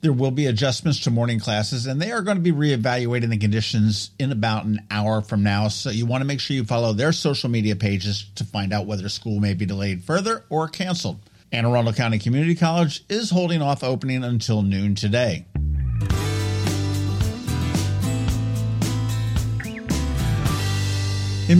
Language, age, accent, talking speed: English, 50-69, American, 160 wpm